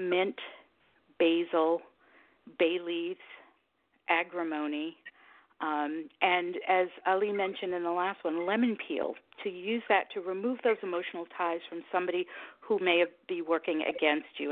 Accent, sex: American, female